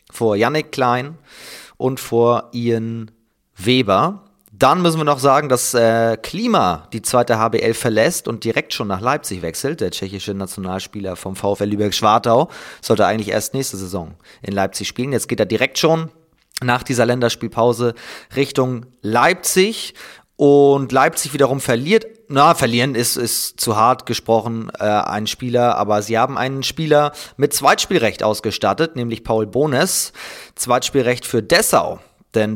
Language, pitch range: German, 105-140 Hz